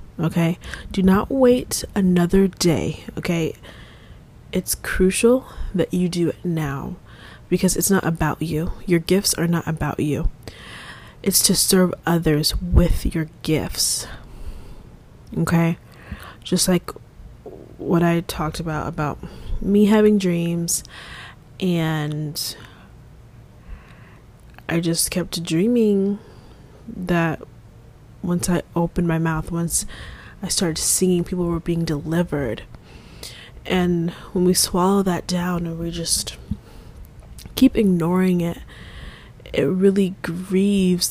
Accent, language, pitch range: American, English, 155-180 Hz